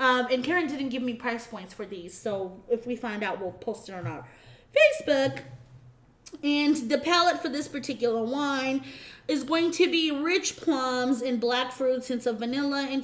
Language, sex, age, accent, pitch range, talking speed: English, female, 20-39, American, 230-275 Hz, 190 wpm